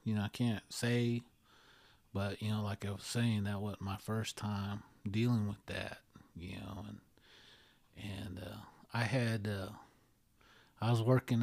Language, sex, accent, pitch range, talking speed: English, male, American, 100-110 Hz, 165 wpm